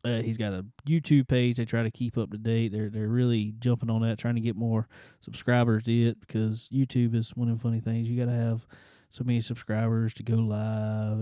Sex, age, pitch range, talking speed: male, 20-39, 110-130 Hz, 230 wpm